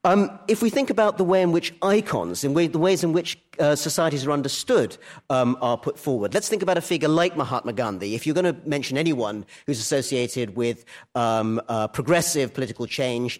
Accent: British